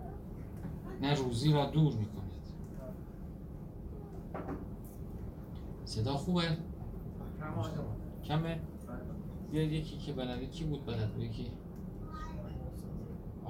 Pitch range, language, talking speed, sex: 110-145 Hz, Persian, 65 wpm, male